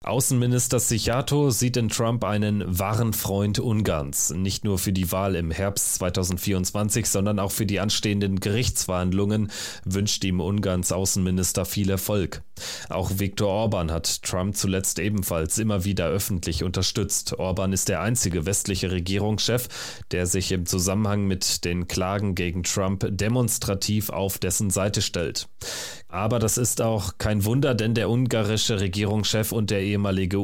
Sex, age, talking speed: male, 30-49, 145 wpm